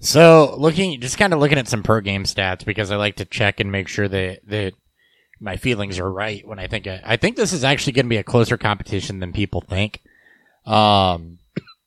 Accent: American